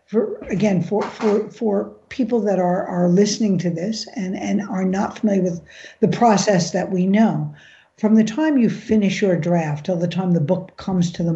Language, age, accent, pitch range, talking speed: English, 60-79, American, 175-215 Hz, 200 wpm